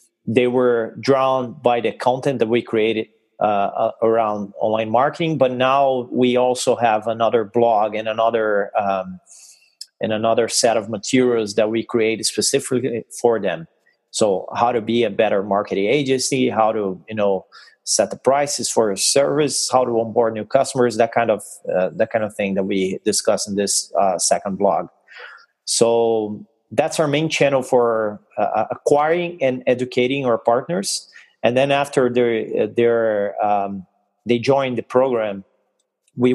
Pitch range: 110-130 Hz